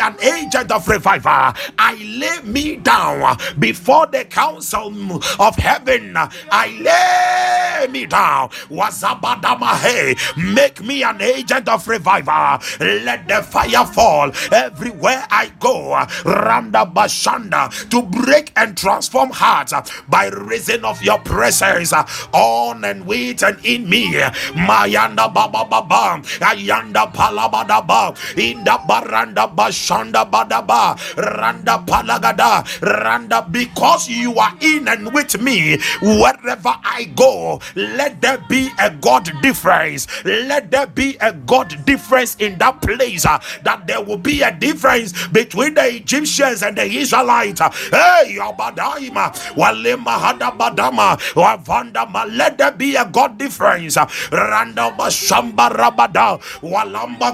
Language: English